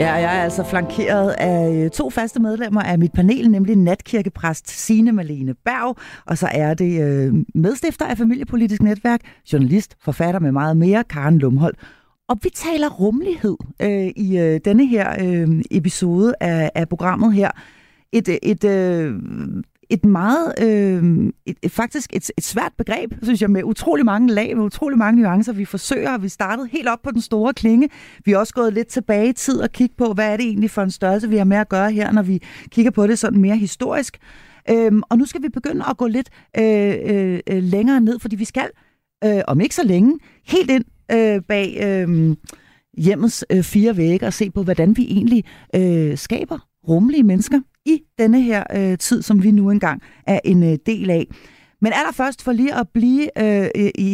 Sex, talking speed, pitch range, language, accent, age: female, 190 wpm, 190-235 Hz, Danish, native, 30-49